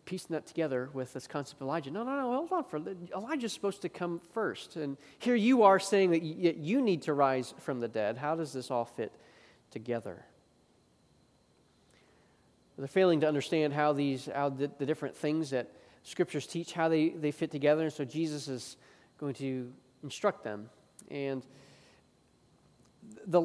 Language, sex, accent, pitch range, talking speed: English, male, American, 135-165 Hz, 170 wpm